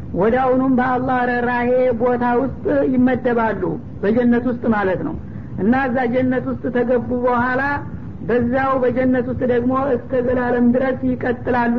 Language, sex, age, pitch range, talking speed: Amharic, female, 60-79, 240-255 Hz, 120 wpm